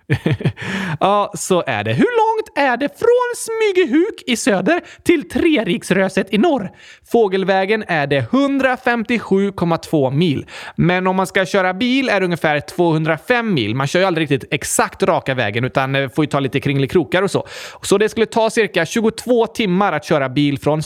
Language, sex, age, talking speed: Swedish, male, 30-49, 175 wpm